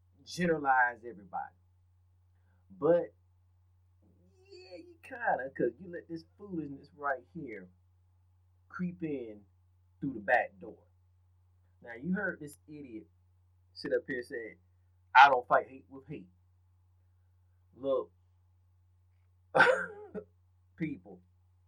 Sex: male